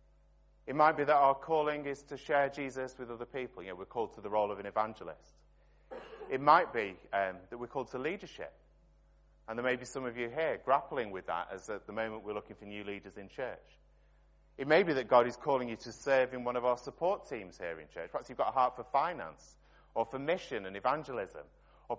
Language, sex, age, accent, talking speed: English, male, 30-49, British, 235 wpm